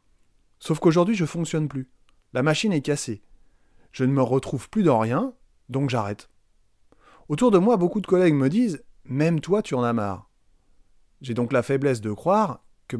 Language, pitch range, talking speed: French, 115-160 Hz, 195 wpm